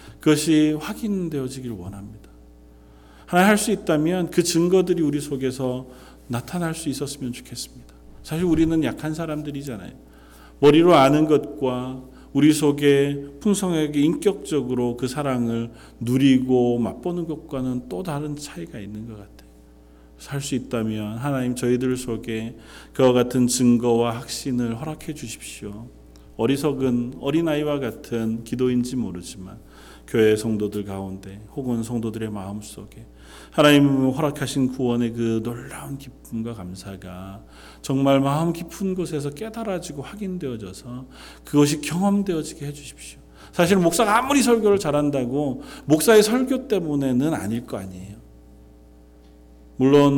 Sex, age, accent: male, 40-59, native